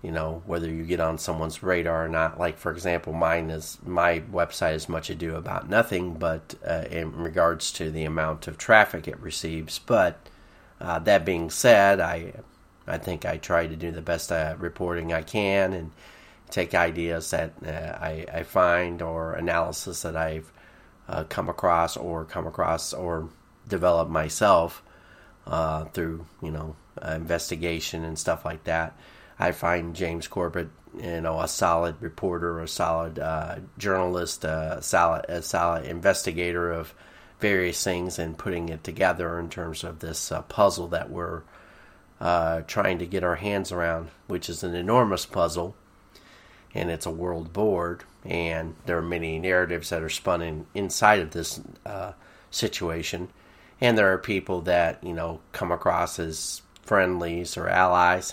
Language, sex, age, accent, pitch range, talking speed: English, male, 30-49, American, 80-90 Hz, 165 wpm